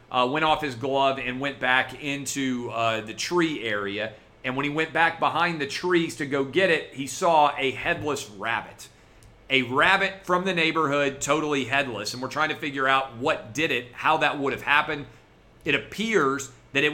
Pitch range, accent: 125-160 Hz, American